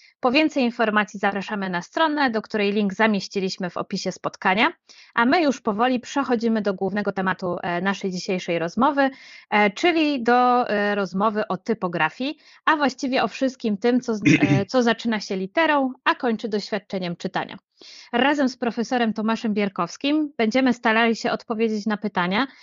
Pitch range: 200-255 Hz